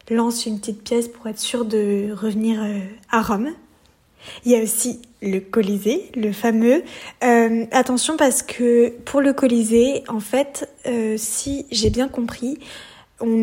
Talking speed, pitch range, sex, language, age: 155 wpm, 210-245 Hz, female, French, 10-29